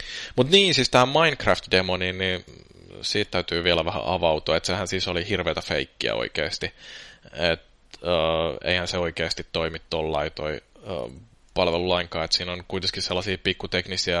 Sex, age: male, 20-39